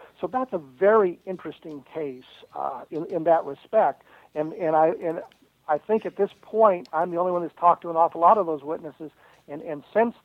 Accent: American